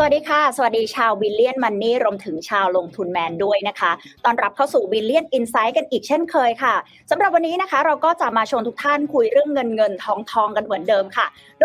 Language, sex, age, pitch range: Thai, female, 20-39, 225-310 Hz